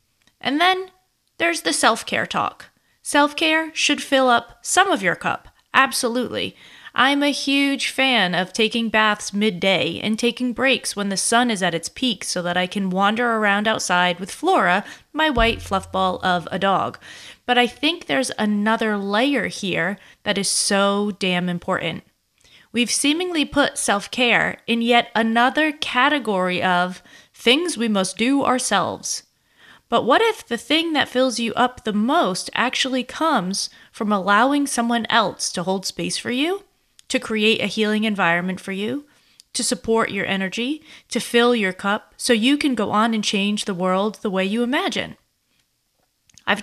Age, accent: 30-49, American